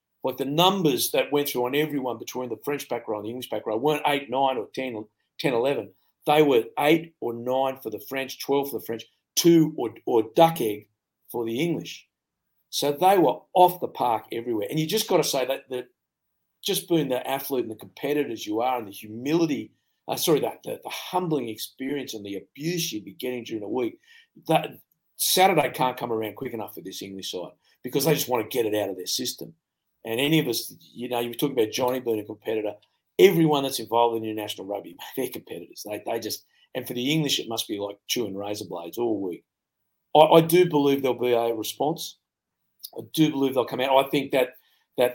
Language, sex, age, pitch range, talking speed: English, male, 50-69, 110-145 Hz, 220 wpm